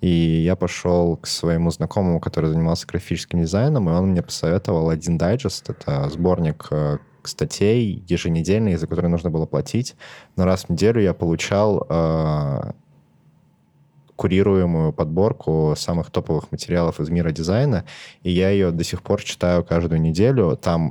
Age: 20-39